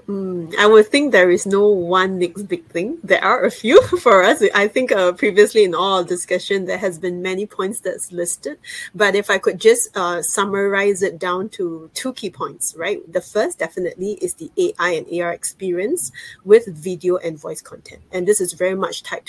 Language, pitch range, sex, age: English, 175-210 Hz, female, 30-49